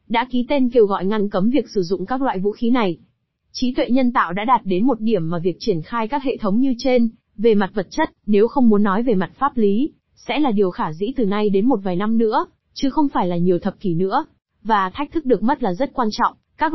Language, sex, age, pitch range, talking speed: Vietnamese, female, 20-39, 200-250 Hz, 270 wpm